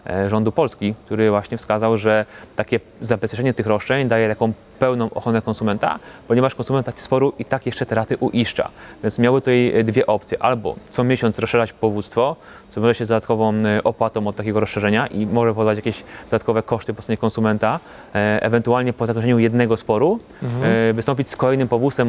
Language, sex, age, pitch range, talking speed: Polish, male, 20-39, 110-120 Hz, 165 wpm